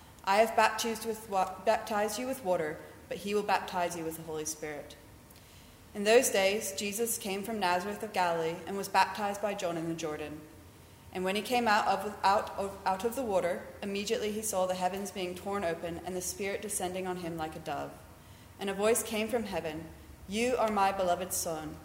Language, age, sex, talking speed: English, 30-49, female, 185 wpm